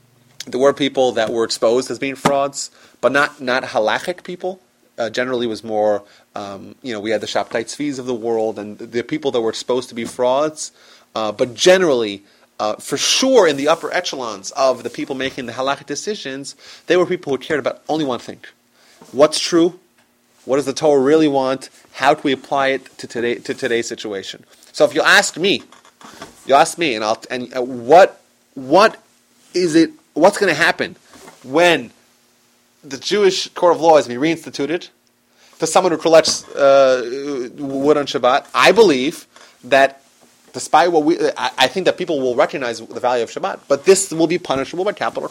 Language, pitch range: English, 125-165 Hz